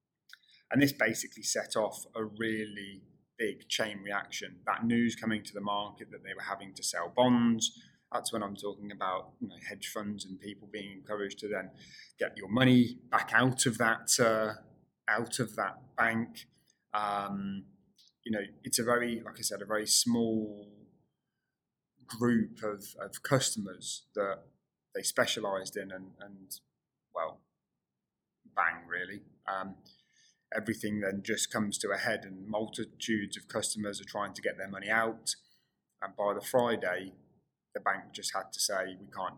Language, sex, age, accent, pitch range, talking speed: English, male, 20-39, British, 100-115 Hz, 160 wpm